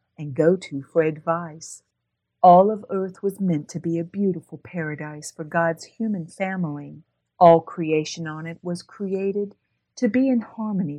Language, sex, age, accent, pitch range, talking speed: English, female, 50-69, American, 150-195 Hz, 160 wpm